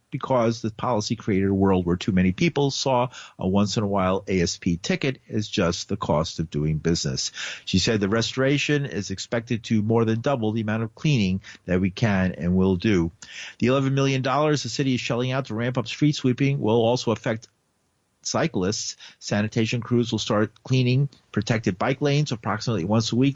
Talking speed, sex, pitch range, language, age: 185 wpm, male, 105-130 Hz, English, 50-69